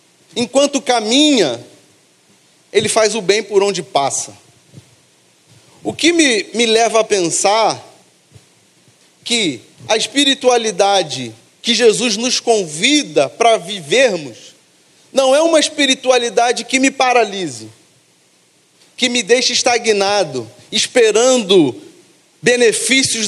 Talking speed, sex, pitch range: 100 wpm, male, 220-265 Hz